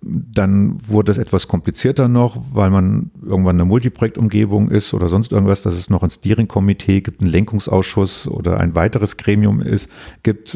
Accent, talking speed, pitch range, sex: German, 165 wpm, 95-115 Hz, male